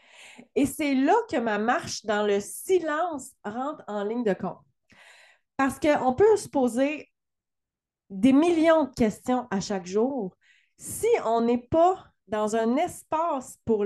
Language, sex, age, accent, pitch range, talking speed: French, female, 30-49, Canadian, 215-285 Hz, 145 wpm